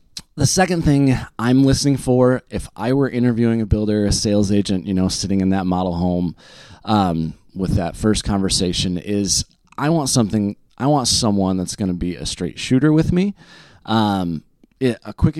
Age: 20-39